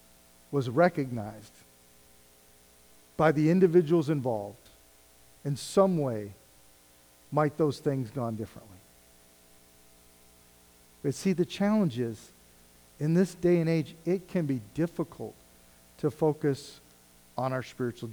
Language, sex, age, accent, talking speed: English, male, 50-69, American, 110 wpm